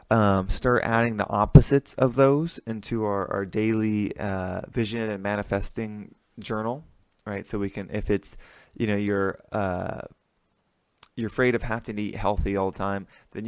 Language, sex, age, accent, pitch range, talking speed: English, male, 20-39, American, 100-110 Hz, 165 wpm